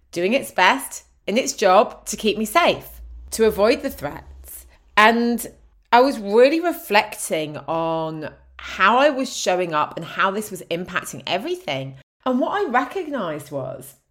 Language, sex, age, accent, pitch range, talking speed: English, female, 30-49, British, 150-240 Hz, 155 wpm